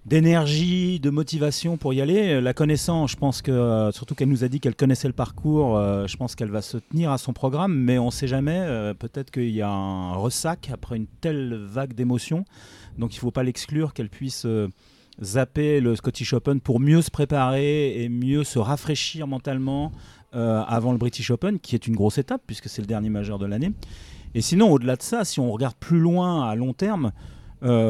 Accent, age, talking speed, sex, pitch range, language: French, 40-59, 200 wpm, male, 115-150 Hz, French